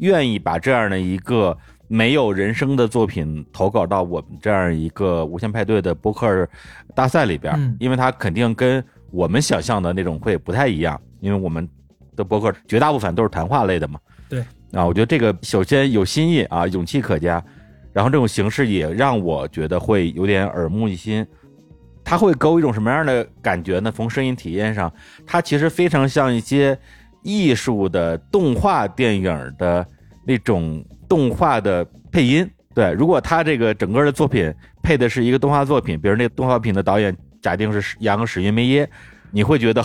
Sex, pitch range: male, 85-130 Hz